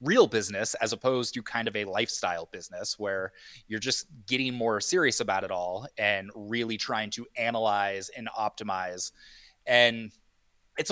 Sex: male